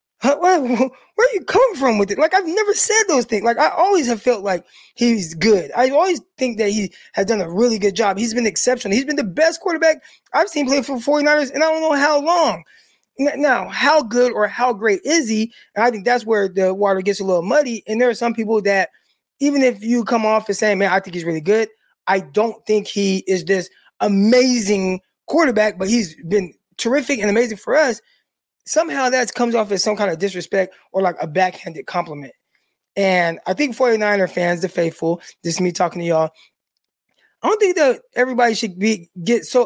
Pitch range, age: 200-275 Hz, 20-39